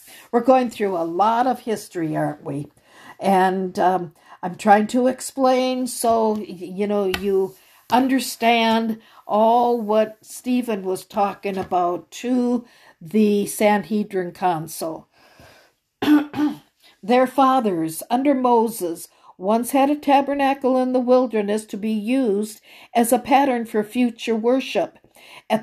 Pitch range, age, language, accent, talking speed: 200-250 Hz, 60-79, English, American, 120 wpm